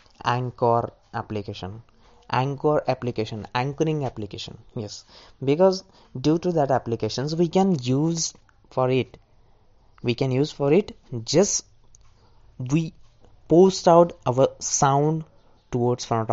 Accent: native